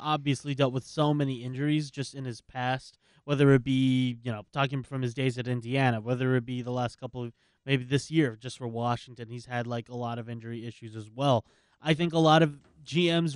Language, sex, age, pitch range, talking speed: English, male, 20-39, 125-150 Hz, 225 wpm